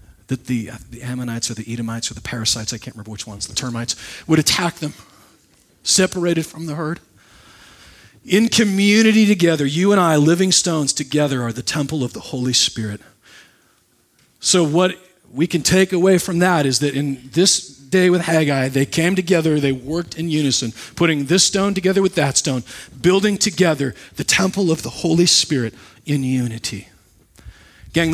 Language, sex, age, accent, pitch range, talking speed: English, male, 40-59, American, 125-180 Hz, 170 wpm